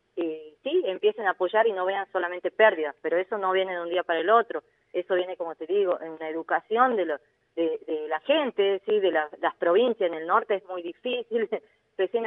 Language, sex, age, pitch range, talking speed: Spanish, female, 20-39, 170-225 Hz, 225 wpm